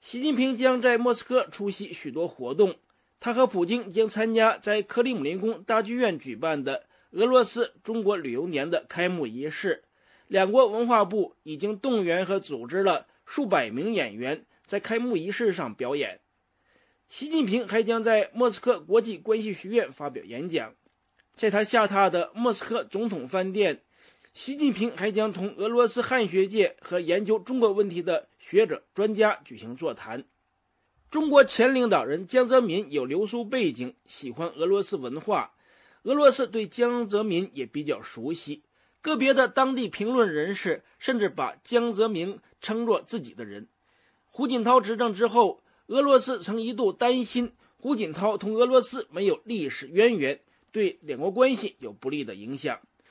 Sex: male